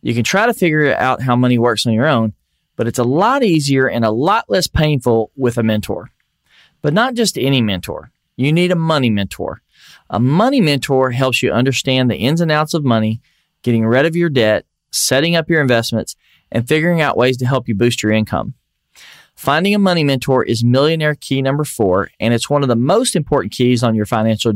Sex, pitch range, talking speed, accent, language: male, 115-160 Hz, 210 wpm, American, English